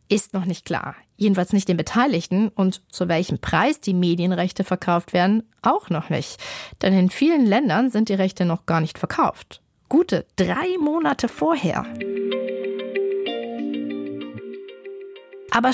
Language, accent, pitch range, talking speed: German, German, 175-235 Hz, 135 wpm